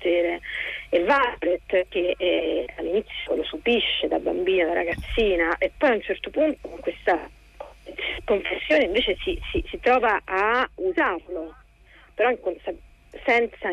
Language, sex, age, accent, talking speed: Italian, female, 40-59, native, 135 wpm